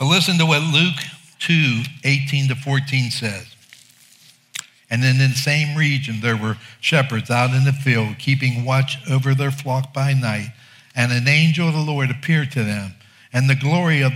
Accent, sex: American, male